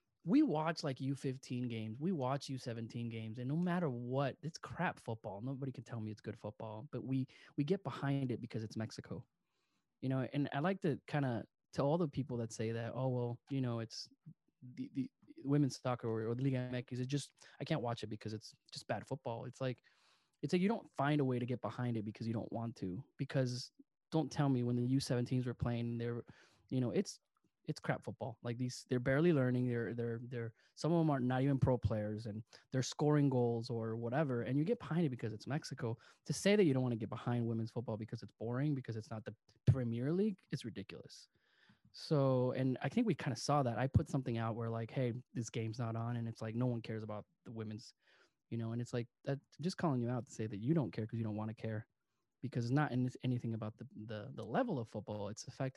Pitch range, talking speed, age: 115-140 Hz, 240 wpm, 20-39